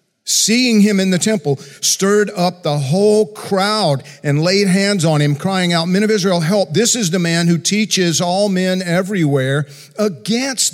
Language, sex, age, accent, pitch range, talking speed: English, male, 50-69, American, 135-190 Hz, 175 wpm